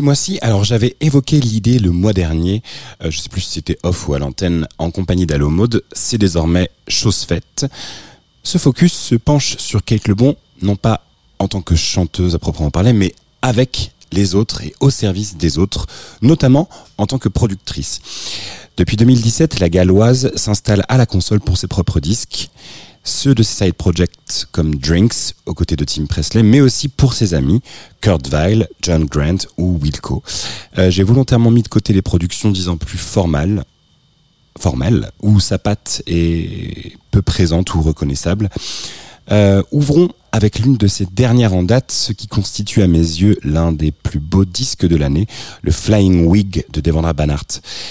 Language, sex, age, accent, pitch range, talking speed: French, male, 30-49, French, 85-115 Hz, 175 wpm